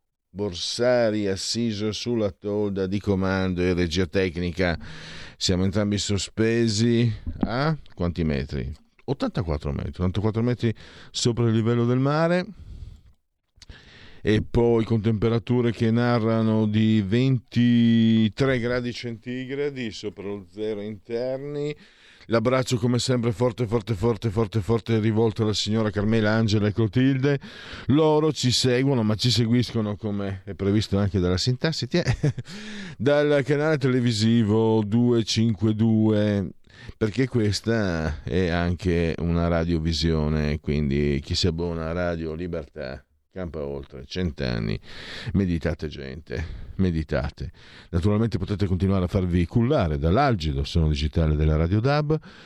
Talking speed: 115 wpm